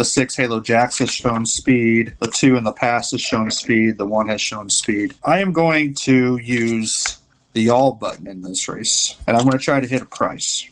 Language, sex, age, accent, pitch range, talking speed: English, male, 40-59, American, 115-140 Hz, 225 wpm